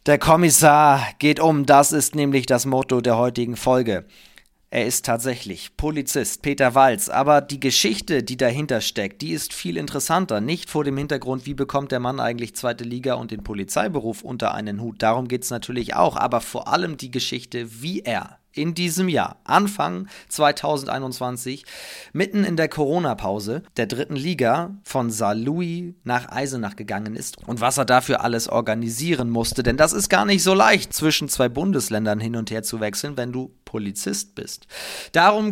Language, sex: German, male